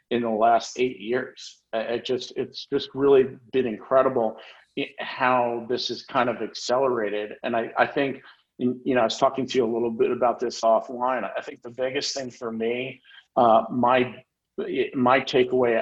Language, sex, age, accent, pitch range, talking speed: English, male, 50-69, American, 115-125 Hz, 175 wpm